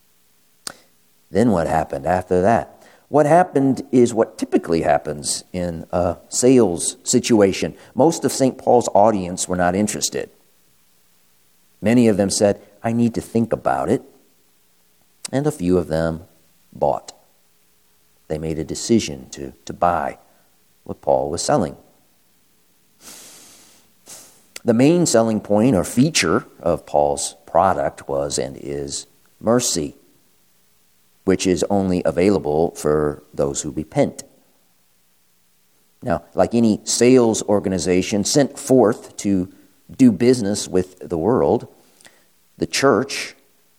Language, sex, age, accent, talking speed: English, male, 50-69, American, 120 wpm